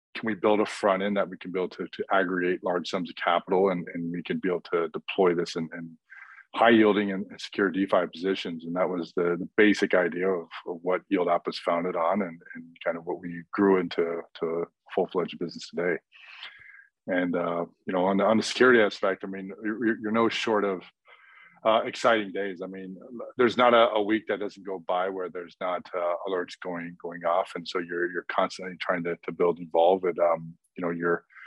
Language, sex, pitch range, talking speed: English, male, 85-100 Hz, 220 wpm